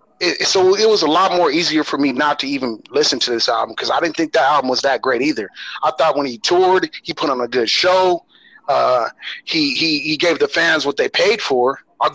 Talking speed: 245 wpm